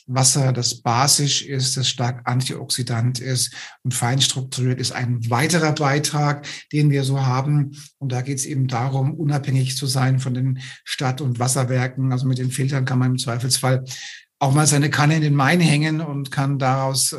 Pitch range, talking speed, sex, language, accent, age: 130-150 Hz, 180 wpm, male, German, German, 50-69